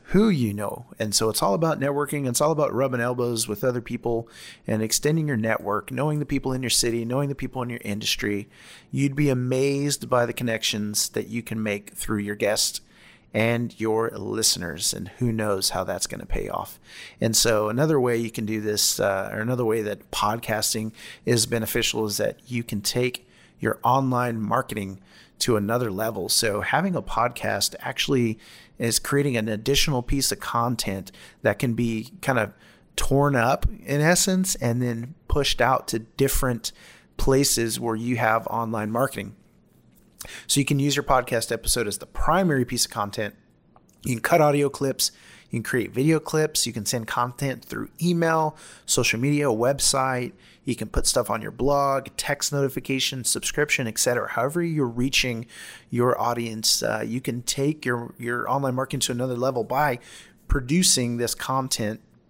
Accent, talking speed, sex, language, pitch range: American, 175 wpm, male, English, 110-135 Hz